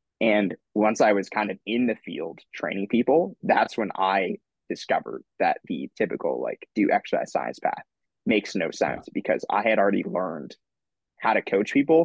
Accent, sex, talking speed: American, male, 175 wpm